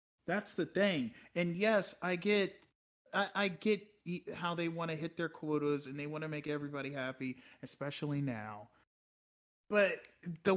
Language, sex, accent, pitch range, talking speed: English, male, American, 130-175 Hz, 160 wpm